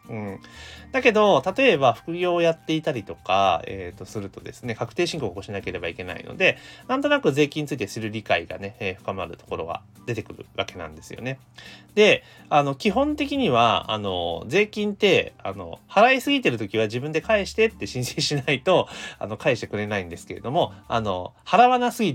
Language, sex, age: Japanese, male, 30-49